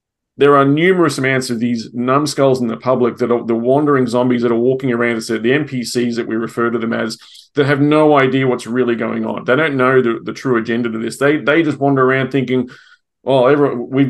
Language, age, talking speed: English, 30-49, 225 wpm